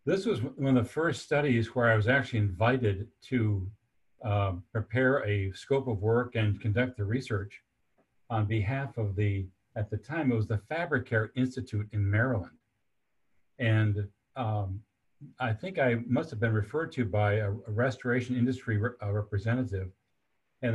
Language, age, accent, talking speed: English, 50-69, American, 155 wpm